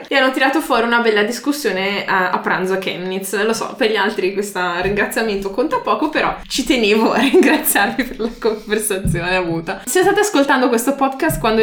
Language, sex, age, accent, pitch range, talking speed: Italian, female, 20-39, native, 205-265 Hz, 185 wpm